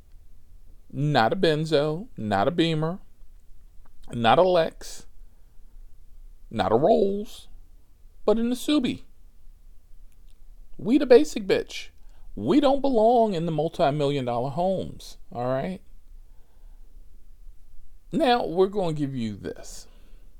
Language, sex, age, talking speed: English, male, 40-59, 105 wpm